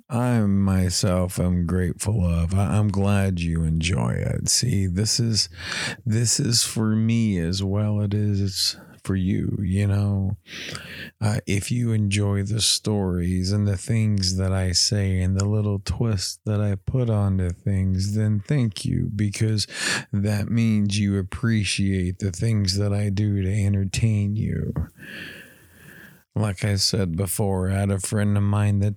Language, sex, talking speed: English, male, 155 wpm